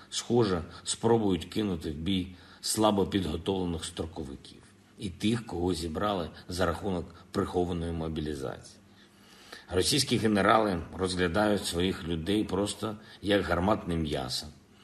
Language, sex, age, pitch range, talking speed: Ukrainian, male, 50-69, 85-105 Hz, 100 wpm